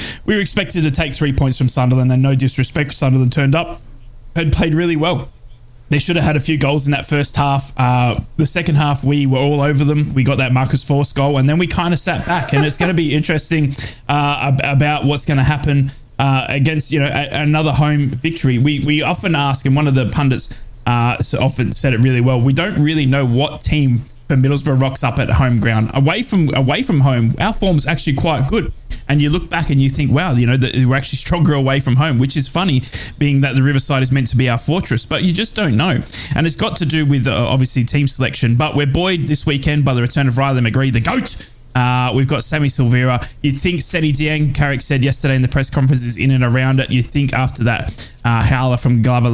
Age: 20-39